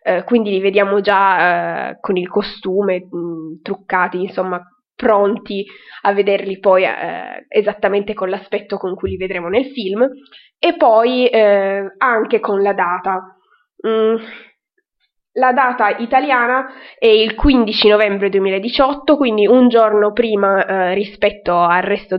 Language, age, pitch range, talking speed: Italian, 20-39, 190-235 Hz, 120 wpm